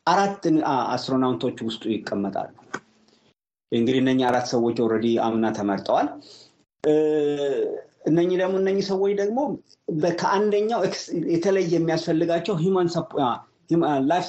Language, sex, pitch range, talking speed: Amharic, male, 130-170 Hz, 90 wpm